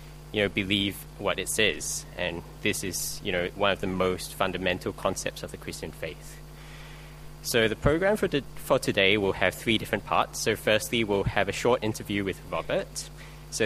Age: 10-29